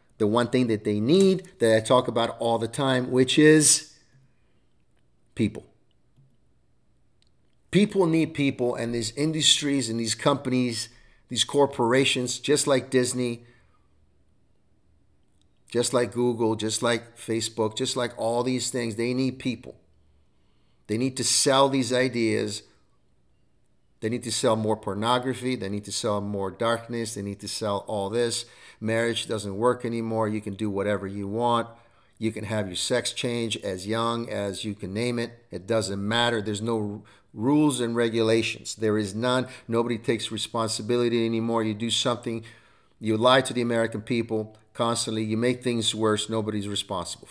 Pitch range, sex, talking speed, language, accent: 110-125 Hz, male, 155 wpm, English, American